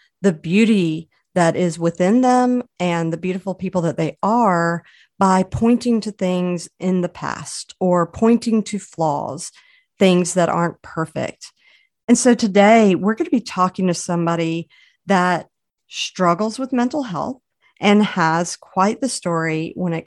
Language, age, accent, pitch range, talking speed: English, 50-69, American, 165-200 Hz, 150 wpm